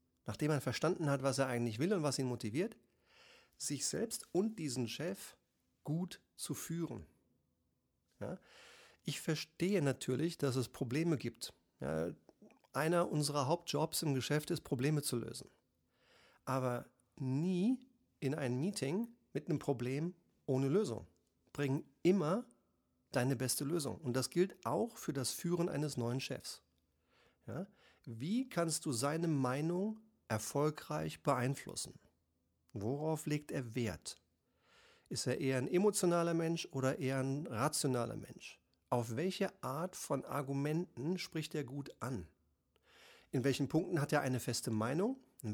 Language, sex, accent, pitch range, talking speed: German, male, German, 125-170 Hz, 135 wpm